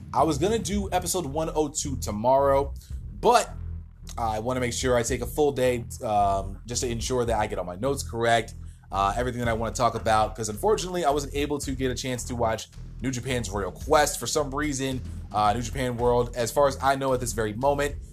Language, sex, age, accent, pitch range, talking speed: English, male, 20-39, American, 115-155 Hz, 230 wpm